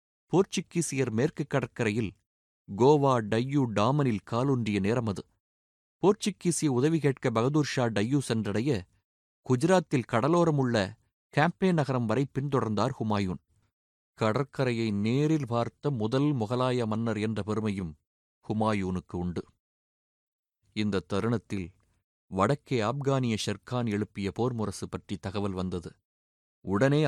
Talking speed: 95 wpm